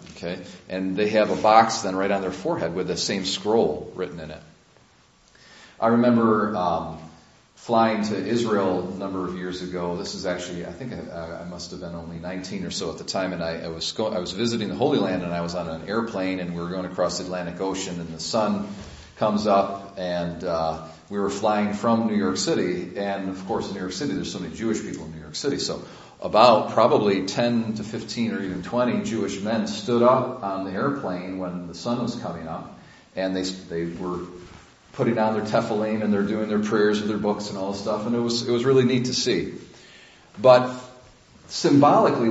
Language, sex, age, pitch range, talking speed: English, male, 40-59, 90-110 Hz, 220 wpm